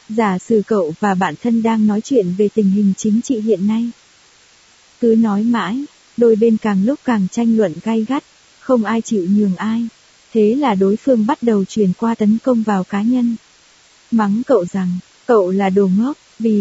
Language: Vietnamese